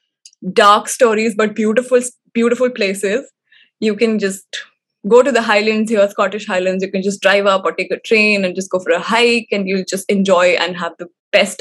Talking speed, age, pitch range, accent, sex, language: 200 wpm, 20-39, 195-250 Hz, Indian, female, English